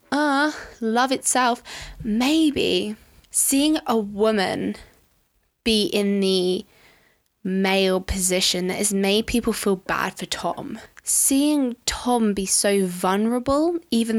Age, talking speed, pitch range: 20-39, 110 wpm, 190-250 Hz